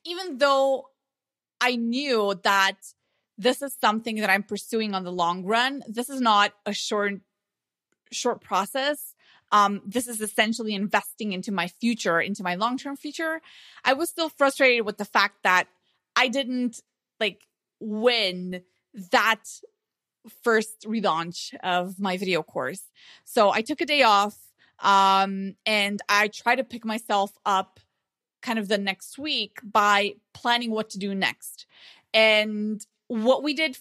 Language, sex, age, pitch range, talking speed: English, female, 20-39, 200-250 Hz, 145 wpm